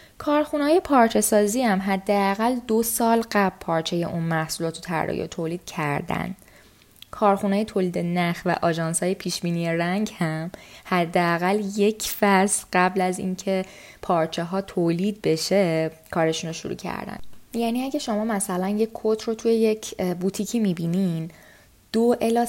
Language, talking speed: Persian, 135 wpm